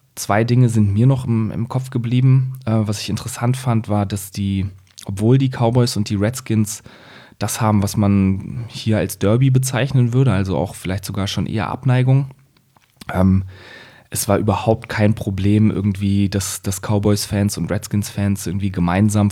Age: 20-39